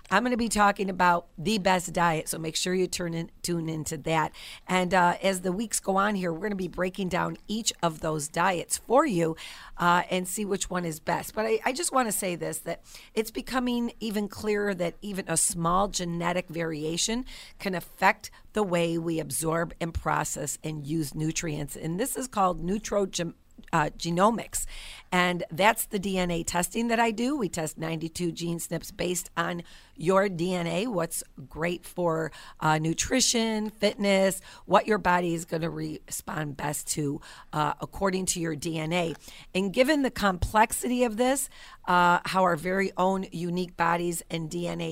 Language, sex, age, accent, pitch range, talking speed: English, female, 40-59, American, 165-200 Hz, 180 wpm